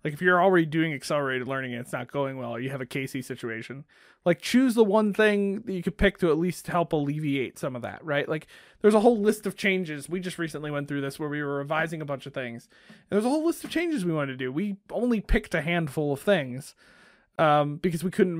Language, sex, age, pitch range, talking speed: English, male, 20-39, 150-195 Hz, 260 wpm